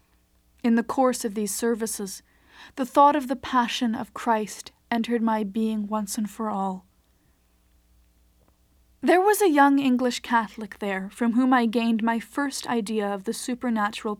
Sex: female